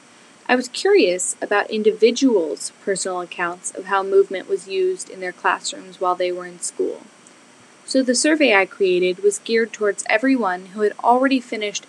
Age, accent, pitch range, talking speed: 10-29, American, 190-255 Hz, 165 wpm